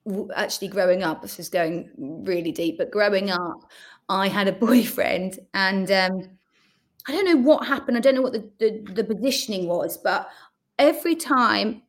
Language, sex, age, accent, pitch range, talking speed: English, female, 30-49, British, 190-255 Hz, 170 wpm